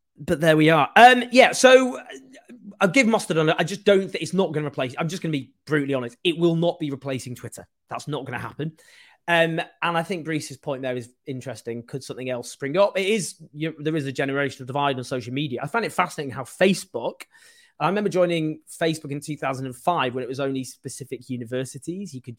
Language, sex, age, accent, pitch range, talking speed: English, male, 20-39, British, 125-170 Hz, 230 wpm